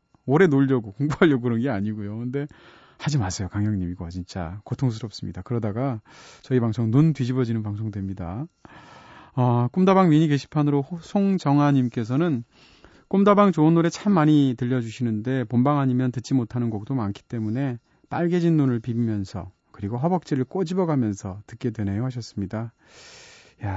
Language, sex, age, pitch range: Korean, male, 30-49, 115-150 Hz